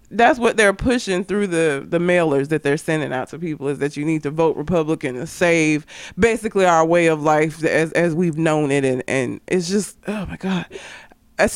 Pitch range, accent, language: 145-185 Hz, American, English